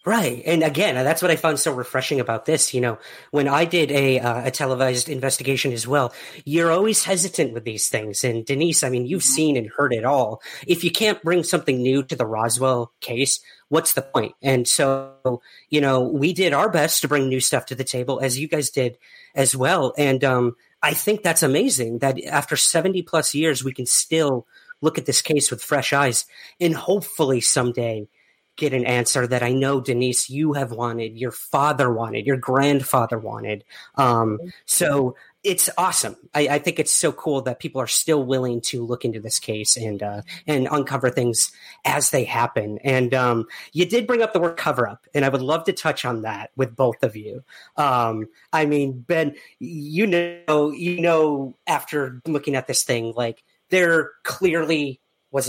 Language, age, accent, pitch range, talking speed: English, 40-59, American, 125-155 Hz, 195 wpm